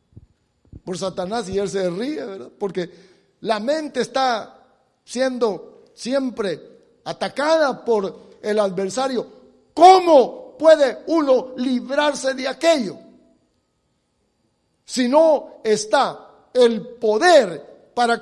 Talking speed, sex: 95 wpm, male